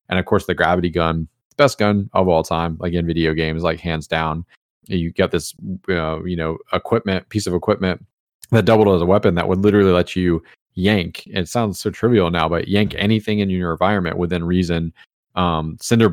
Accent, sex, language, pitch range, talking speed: American, male, English, 85-100 Hz, 200 wpm